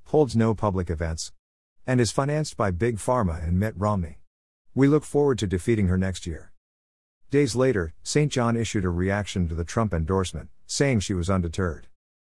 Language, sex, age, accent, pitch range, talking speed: English, male, 50-69, American, 90-115 Hz, 175 wpm